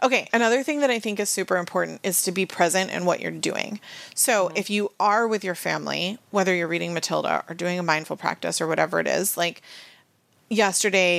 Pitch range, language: 190-245 Hz, English